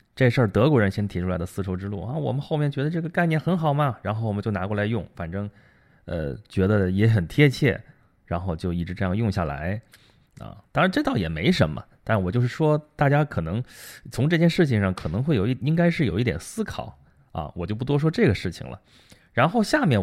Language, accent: Chinese, native